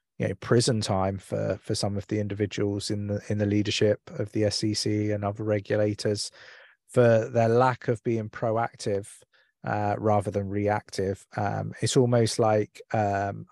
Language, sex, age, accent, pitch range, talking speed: English, male, 20-39, British, 100-115 Hz, 155 wpm